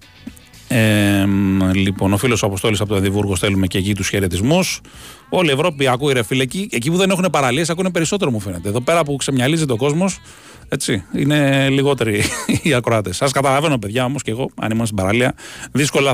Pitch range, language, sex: 105-135 Hz, Greek, male